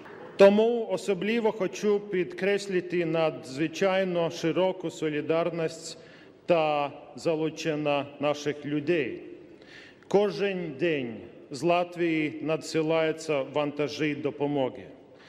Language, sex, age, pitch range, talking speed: Ukrainian, male, 40-59, 160-195 Hz, 70 wpm